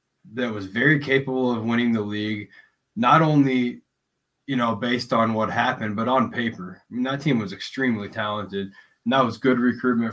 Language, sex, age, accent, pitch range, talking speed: English, male, 20-39, American, 105-125 Hz, 185 wpm